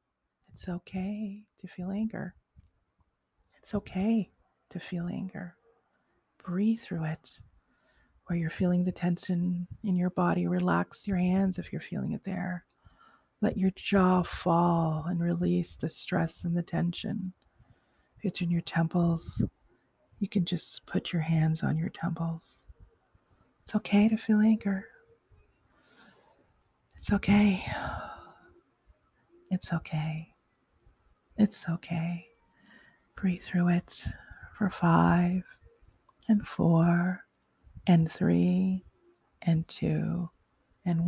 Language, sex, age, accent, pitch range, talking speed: English, female, 40-59, American, 165-200 Hz, 110 wpm